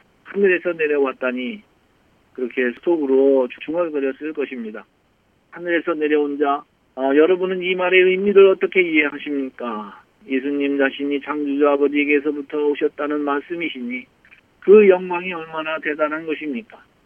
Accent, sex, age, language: native, male, 40-59, Korean